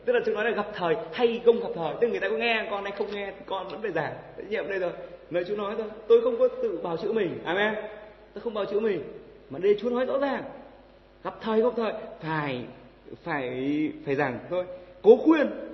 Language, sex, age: Vietnamese, male, 20-39